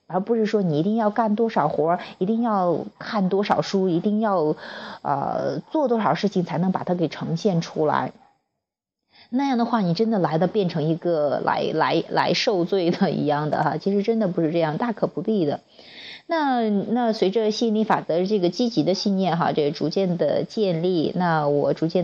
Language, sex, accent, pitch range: Chinese, female, native, 170-225 Hz